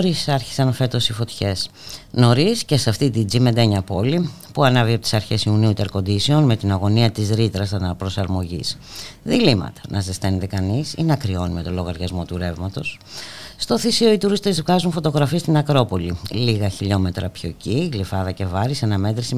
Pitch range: 95-145 Hz